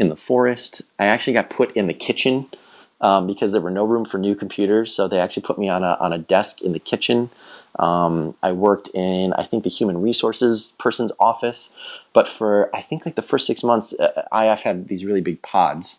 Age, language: 30-49, English